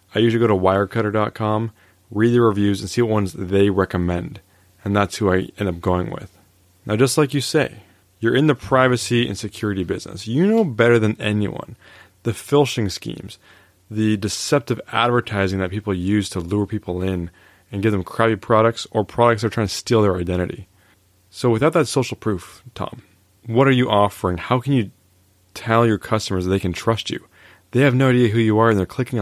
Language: English